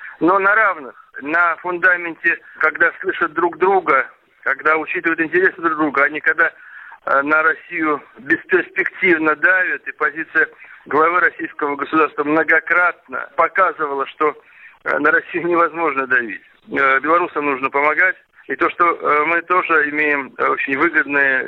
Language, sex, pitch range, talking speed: Russian, male, 150-180 Hz, 125 wpm